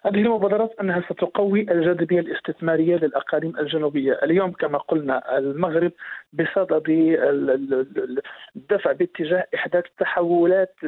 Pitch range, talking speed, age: 160-195 Hz, 95 wpm, 50-69